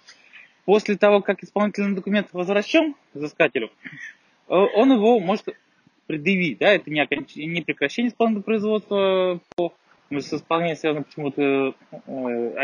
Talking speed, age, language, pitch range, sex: 90 wpm, 20-39, Russian, 140-195 Hz, male